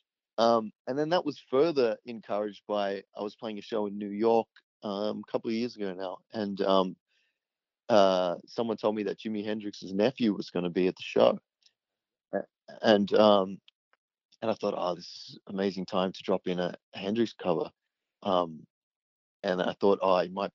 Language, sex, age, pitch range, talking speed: English, male, 30-49, 95-110 Hz, 190 wpm